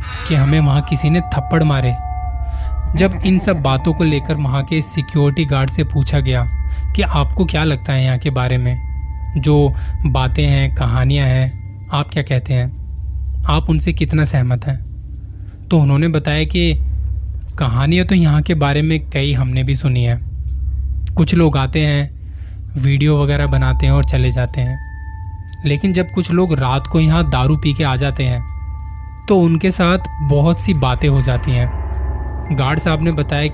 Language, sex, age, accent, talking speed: Hindi, male, 20-39, native, 170 wpm